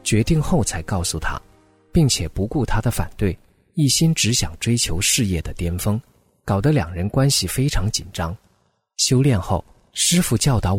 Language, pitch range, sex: Chinese, 90-130 Hz, male